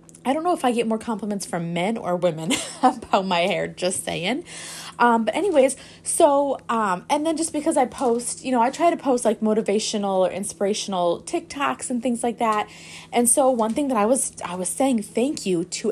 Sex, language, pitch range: female, English, 190-255 Hz